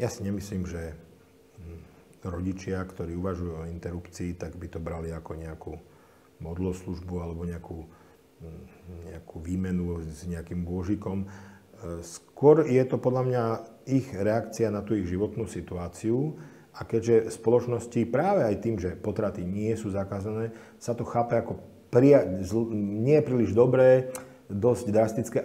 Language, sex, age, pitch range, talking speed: Slovak, male, 40-59, 90-115 Hz, 130 wpm